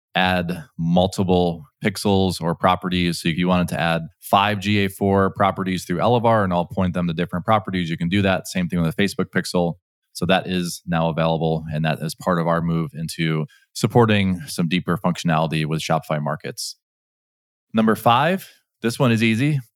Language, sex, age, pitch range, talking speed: English, male, 20-39, 90-110 Hz, 180 wpm